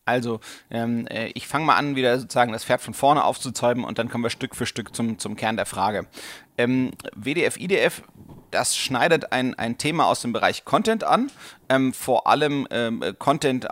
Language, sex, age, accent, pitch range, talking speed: German, male, 30-49, German, 115-140 Hz, 185 wpm